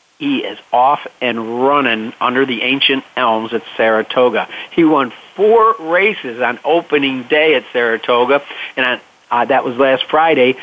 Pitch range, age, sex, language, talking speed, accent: 120-150 Hz, 50-69, male, English, 150 wpm, American